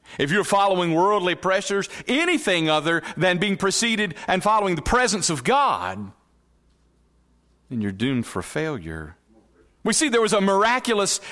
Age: 40-59